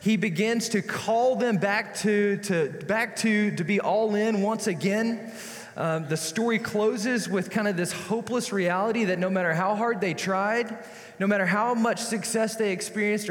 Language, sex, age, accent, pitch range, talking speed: English, male, 20-39, American, 175-220 Hz, 180 wpm